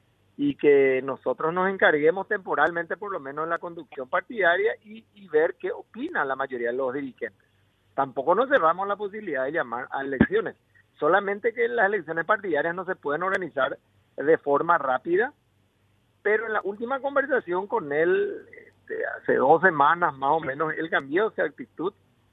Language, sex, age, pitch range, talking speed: Spanish, male, 50-69, 140-205 Hz, 165 wpm